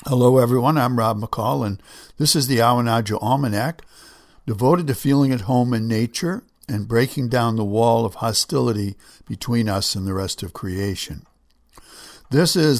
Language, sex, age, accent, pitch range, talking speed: English, male, 60-79, American, 110-145 Hz, 160 wpm